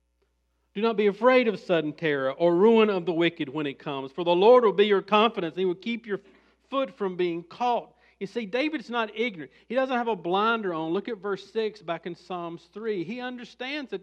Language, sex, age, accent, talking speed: English, male, 50-69, American, 225 wpm